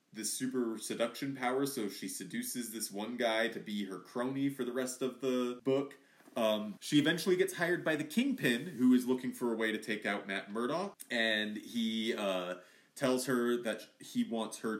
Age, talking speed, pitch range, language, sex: 30-49, 195 wpm, 100-130 Hz, English, male